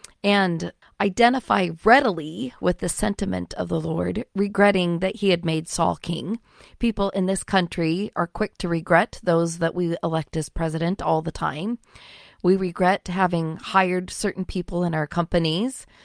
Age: 40-59